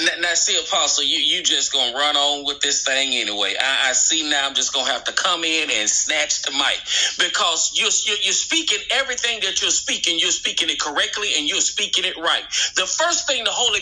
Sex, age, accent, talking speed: male, 30-49, American, 225 wpm